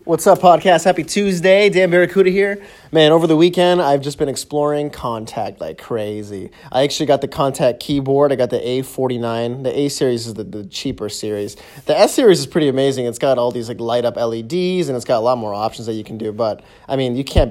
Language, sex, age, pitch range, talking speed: English, male, 20-39, 115-155 Hz, 230 wpm